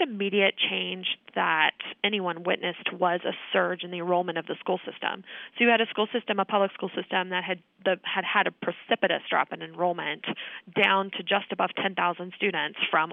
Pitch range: 175-215 Hz